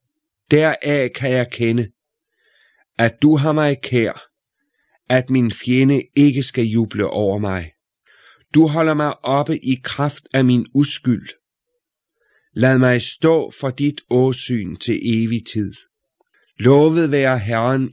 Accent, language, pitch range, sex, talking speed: native, Danish, 120-155 Hz, male, 125 wpm